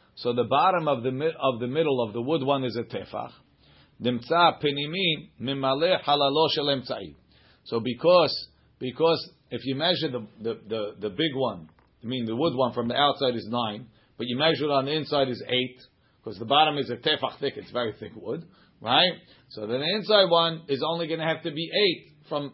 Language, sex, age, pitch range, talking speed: English, male, 40-59, 125-155 Hz, 200 wpm